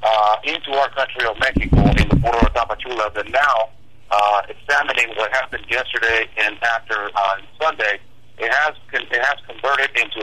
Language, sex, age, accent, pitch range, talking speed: English, male, 50-69, American, 110-130 Hz, 170 wpm